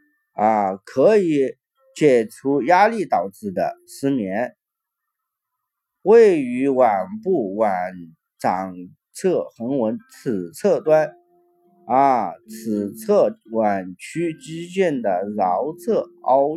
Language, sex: Chinese, male